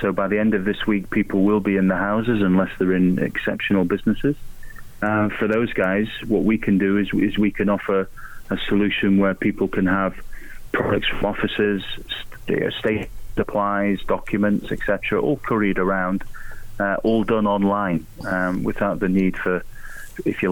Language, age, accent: English, 30-49, British